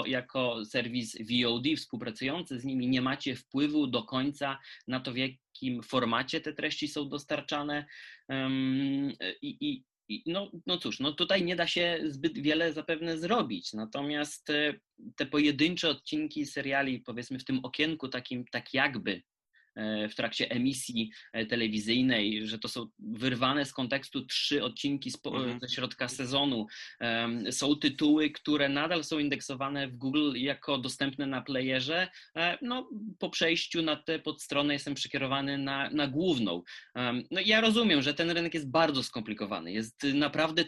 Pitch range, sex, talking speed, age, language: 125-155 Hz, male, 145 wpm, 20-39, Polish